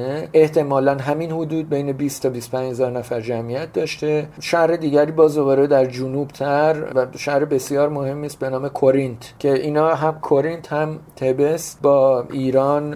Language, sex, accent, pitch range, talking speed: English, male, Canadian, 130-150 Hz, 155 wpm